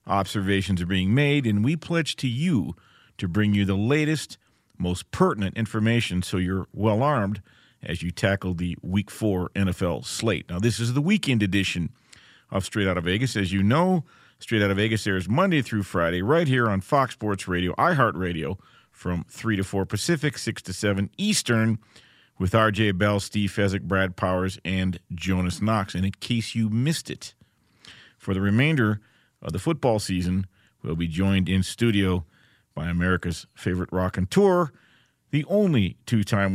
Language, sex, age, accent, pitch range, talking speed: English, male, 50-69, American, 95-125 Hz, 175 wpm